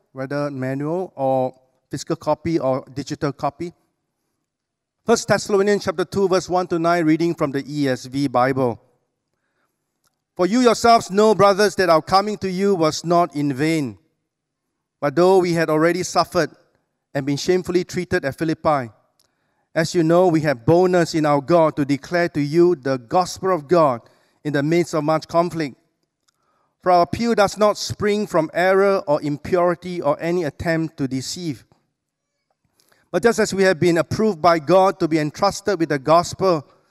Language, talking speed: English, 165 wpm